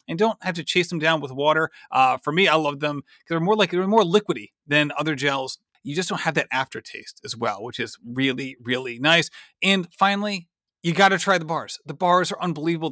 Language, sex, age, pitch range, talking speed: English, male, 30-49, 155-200 Hz, 230 wpm